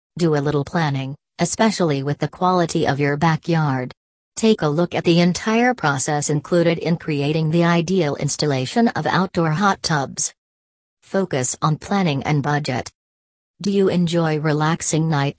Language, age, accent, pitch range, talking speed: English, 40-59, American, 140-175 Hz, 150 wpm